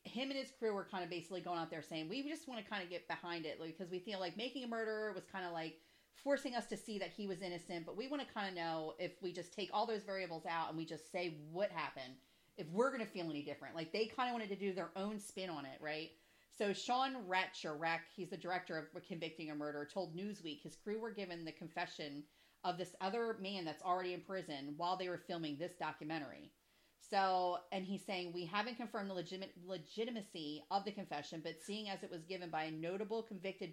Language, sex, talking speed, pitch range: English, female, 245 wpm, 165-210 Hz